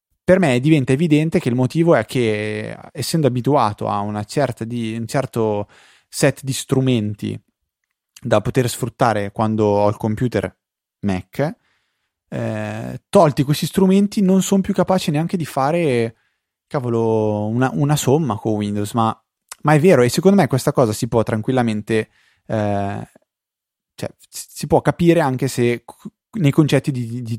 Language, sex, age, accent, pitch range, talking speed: Italian, male, 20-39, native, 110-160 Hz, 150 wpm